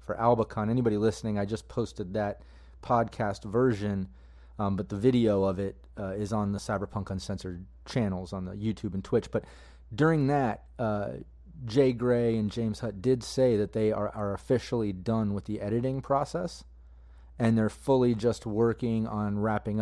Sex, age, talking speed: male, 30-49, 170 wpm